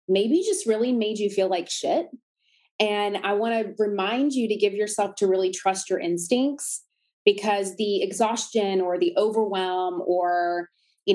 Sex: female